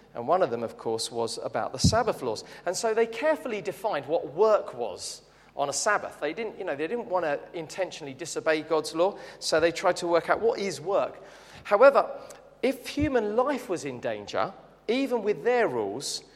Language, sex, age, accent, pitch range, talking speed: English, male, 40-59, British, 145-210 Hz, 200 wpm